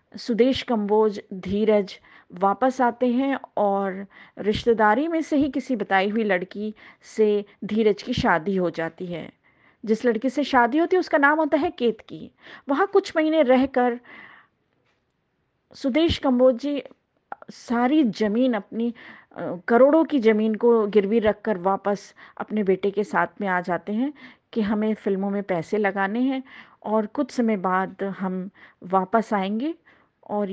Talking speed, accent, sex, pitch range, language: 145 wpm, native, female, 205-260 Hz, Hindi